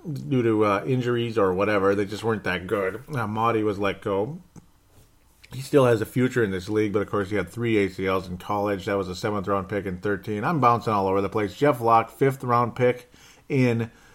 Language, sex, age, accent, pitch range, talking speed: English, male, 40-59, American, 105-140 Hz, 215 wpm